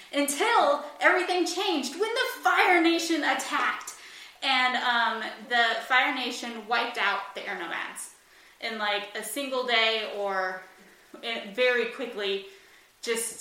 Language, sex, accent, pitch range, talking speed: English, female, American, 205-255 Hz, 120 wpm